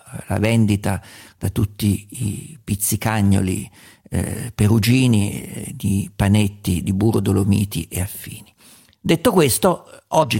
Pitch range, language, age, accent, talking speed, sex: 95-115 Hz, Italian, 50-69, native, 110 wpm, male